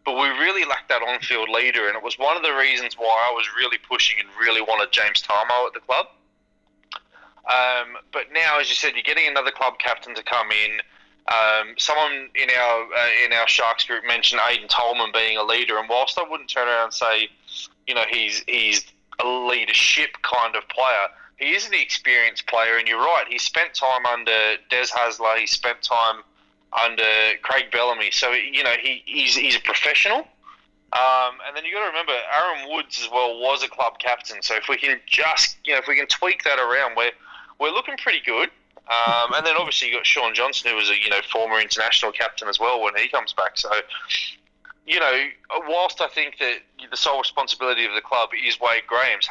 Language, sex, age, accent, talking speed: English, male, 20-39, Australian, 210 wpm